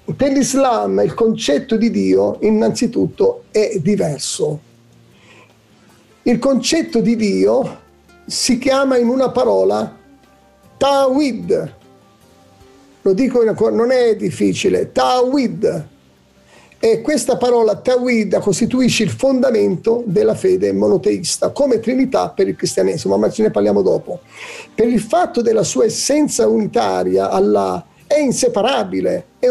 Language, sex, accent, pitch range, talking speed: Italian, male, native, 215-275 Hz, 115 wpm